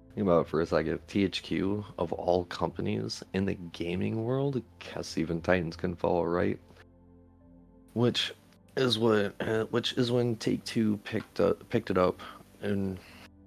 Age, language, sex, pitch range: 30-49, English, male, 85-110 Hz